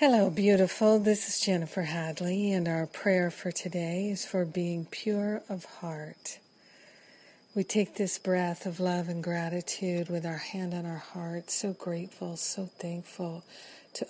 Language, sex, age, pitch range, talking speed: English, female, 50-69, 170-190 Hz, 155 wpm